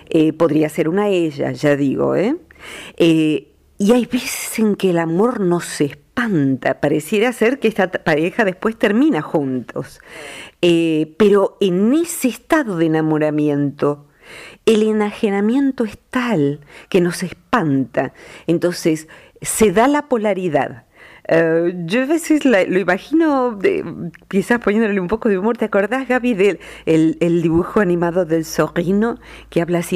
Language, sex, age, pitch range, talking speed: Spanish, female, 50-69, 170-255 Hz, 140 wpm